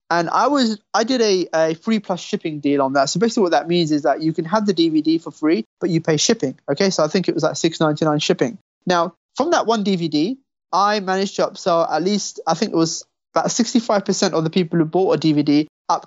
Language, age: English, 20-39